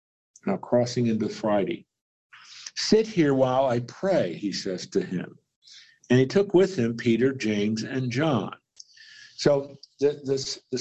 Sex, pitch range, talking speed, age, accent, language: male, 115-160 Hz, 140 wpm, 50-69, American, English